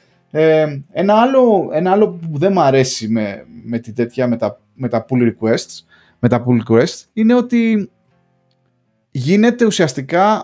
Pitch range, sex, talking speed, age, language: 130-190 Hz, male, 150 wpm, 20-39, Greek